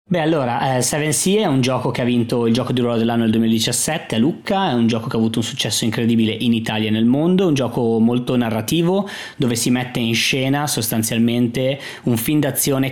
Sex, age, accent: male, 20-39, native